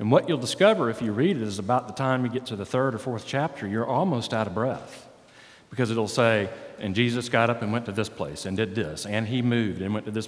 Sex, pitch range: male, 100-125 Hz